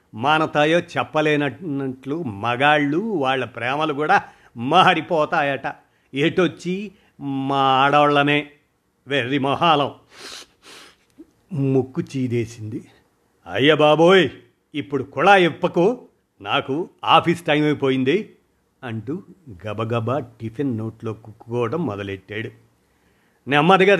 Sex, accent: male, native